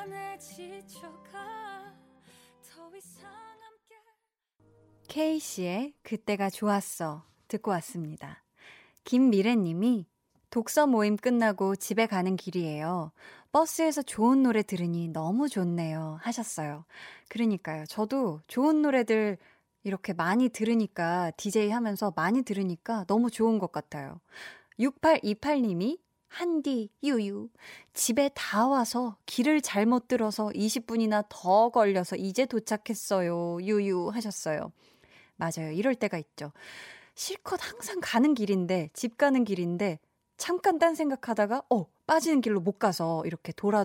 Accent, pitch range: native, 185-260 Hz